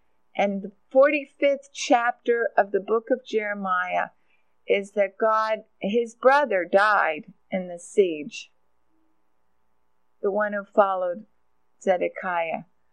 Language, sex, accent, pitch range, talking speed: English, female, American, 190-255 Hz, 105 wpm